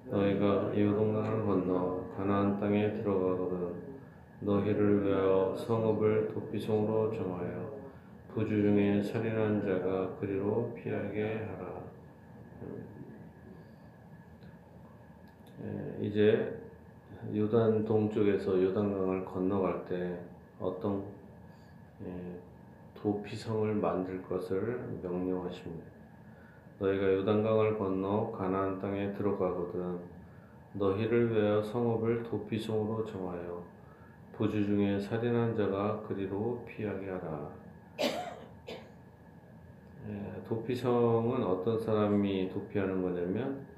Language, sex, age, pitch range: Korean, male, 30-49, 95-110 Hz